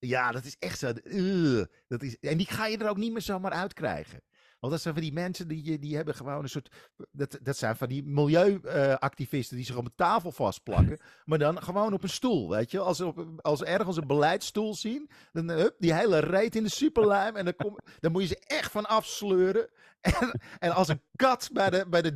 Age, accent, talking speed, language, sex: 50-69, Dutch, 230 wpm, Dutch, male